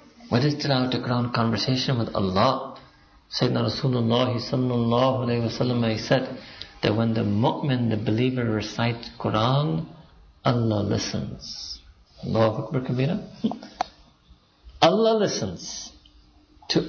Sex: male